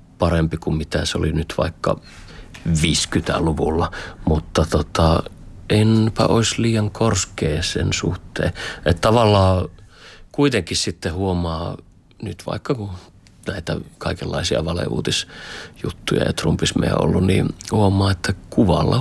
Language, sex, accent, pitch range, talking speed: Finnish, male, native, 85-100 Hz, 110 wpm